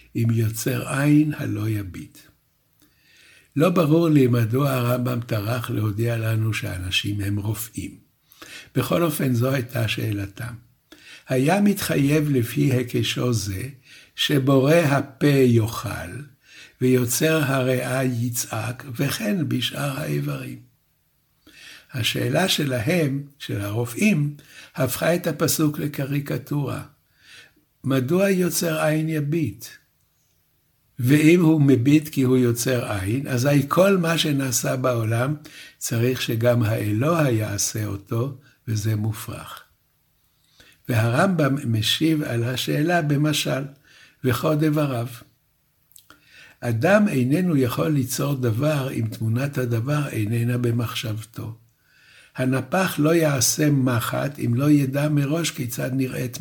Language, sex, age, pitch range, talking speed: Hebrew, male, 60-79, 115-150 Hz, 100 wpm